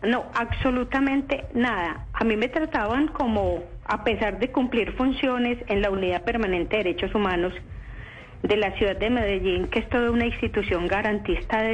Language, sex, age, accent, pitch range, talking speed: Spanish, female, 40-59, Colombian, 200-245 Hz, 165 wpm